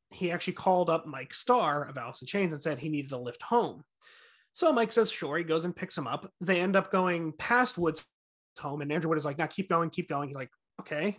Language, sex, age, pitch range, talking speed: English, male, 30-49, 150-185 Hz, 250 wpm